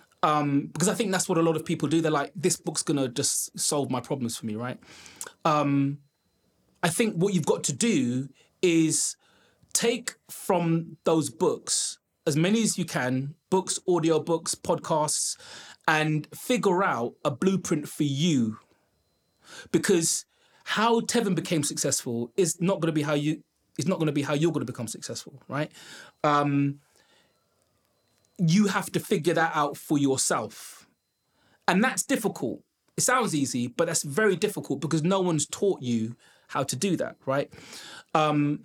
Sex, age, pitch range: male, 20-39, 145-180 Hz